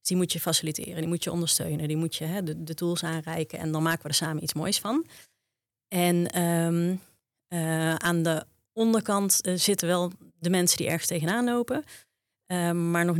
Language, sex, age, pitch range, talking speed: Dutch, female, 30-49, 160-185 Hz, 180 wpm